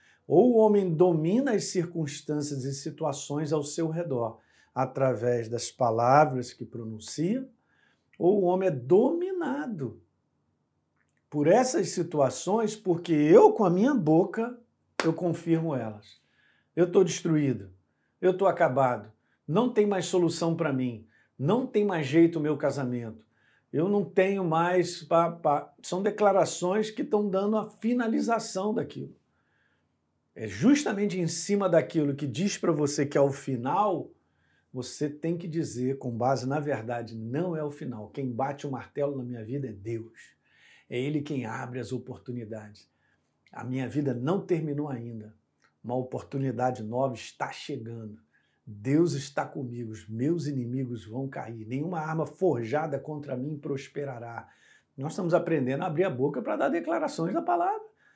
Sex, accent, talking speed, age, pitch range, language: male, Brazilian, 145 wpm, 50-69, 125-180 Hz, Portuguese